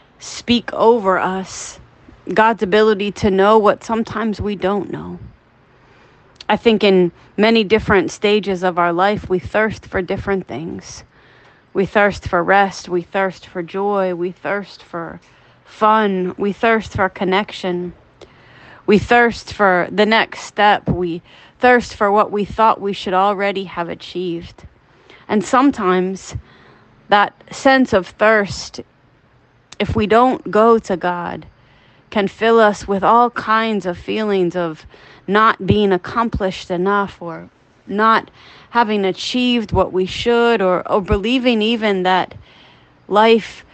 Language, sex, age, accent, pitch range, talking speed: English, female, 30-49, American, 185-220 Hz, 135 wpm